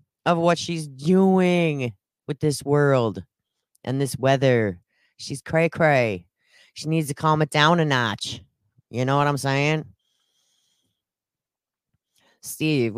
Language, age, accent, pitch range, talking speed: English, 30-49, American, 115-145 Hz, 120 wpm